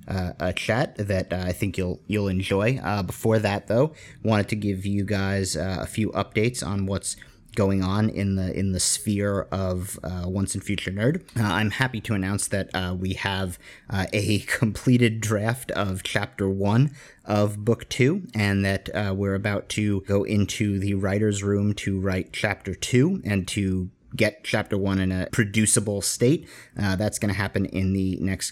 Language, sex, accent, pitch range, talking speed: English, male, American, 95-110 Hz, 185 wpm